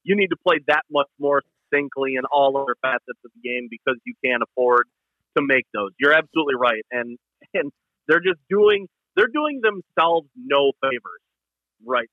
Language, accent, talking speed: English, American, 180 wpm